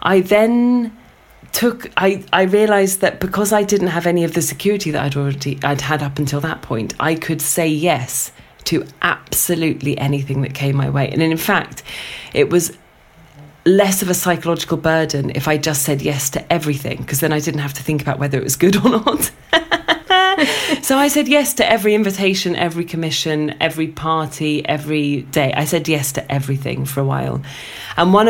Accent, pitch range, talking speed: British, 140-185 Hz, 185 wpm